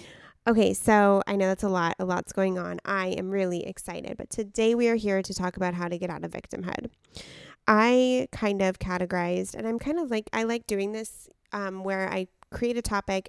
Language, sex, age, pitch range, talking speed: English, female, 20-39, 180-205 Hz, 215 wpm